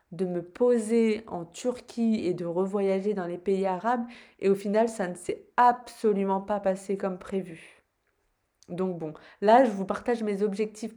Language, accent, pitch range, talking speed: French, French, 190-230 Hz, 170 wpm